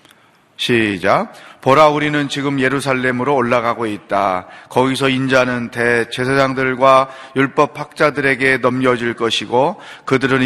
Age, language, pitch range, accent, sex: 30-49, Korean, 115-150 Hz, native, male